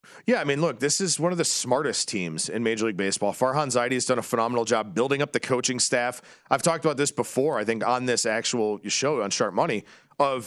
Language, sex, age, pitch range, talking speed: English, male, 40-59, 115-150 Hz, 240 wpm